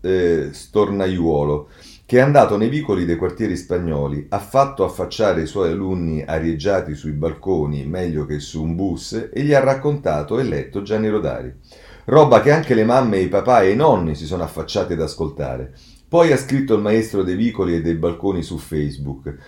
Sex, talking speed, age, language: male, 180 wpm, 40-59, Italian